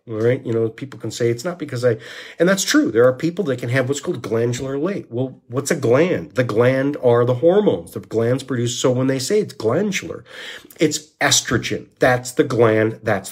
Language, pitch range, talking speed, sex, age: English, 115-155 Hz, 215 wpm, male, 50-69